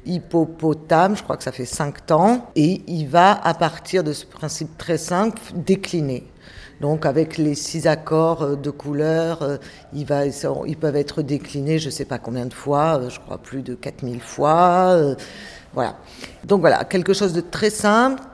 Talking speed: 175 wpm